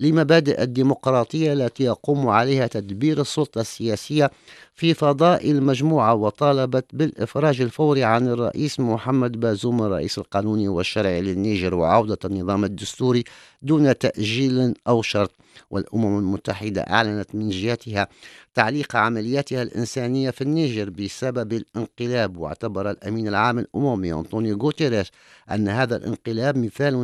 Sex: male